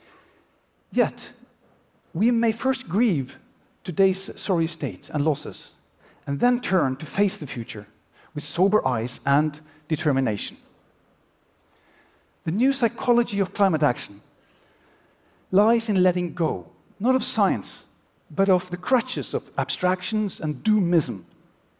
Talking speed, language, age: 120 wpm, English, 50-69